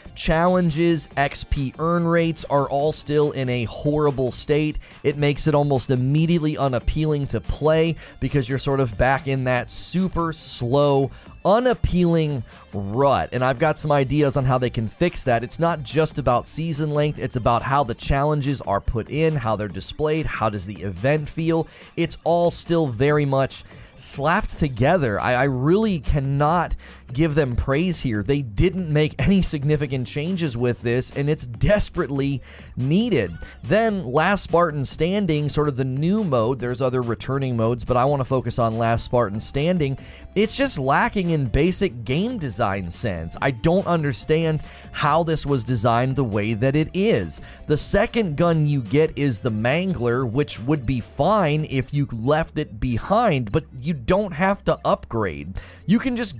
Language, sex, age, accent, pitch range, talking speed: English, male, 30-49, American, 125-160 Hz, 170 wpm